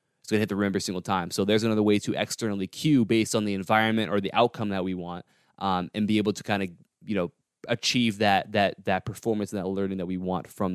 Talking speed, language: 255 wpm, English